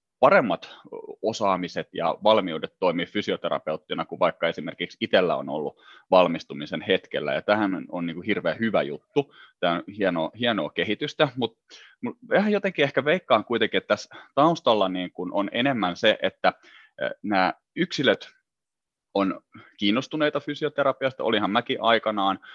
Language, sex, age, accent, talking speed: Finnish, male, 30-49, native, 130 wpm